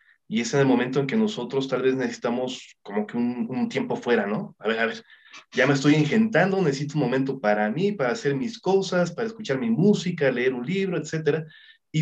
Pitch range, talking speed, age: 135-190 Hz, 220 wpm, 30-49